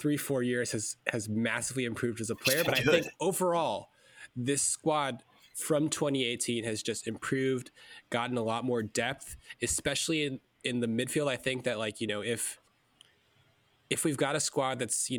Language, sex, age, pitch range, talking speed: English, male, 20-39, 115-140 Hz, 180 wpm